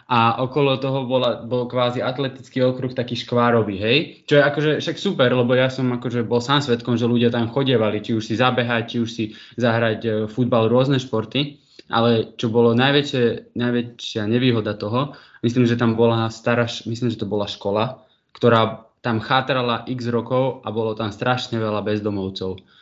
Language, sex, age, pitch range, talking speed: Slovak, male, 20-39, 110-125 Hz, 170 wpm